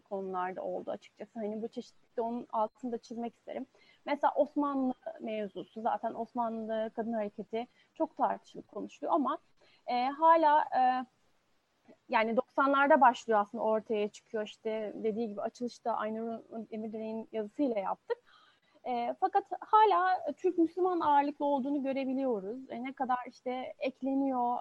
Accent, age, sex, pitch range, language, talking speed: native, 30-49, female, 215-275 Hz, Turkish, 125 wpm